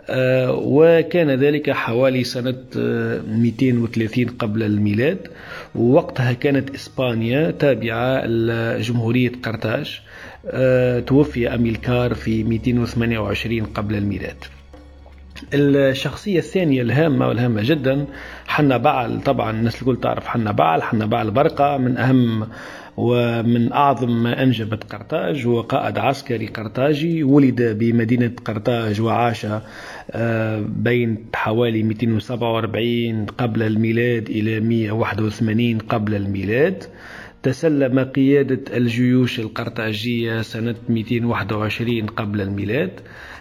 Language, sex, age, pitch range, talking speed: Arabic, male, 40-59, 115-130 Hz, 95 wpm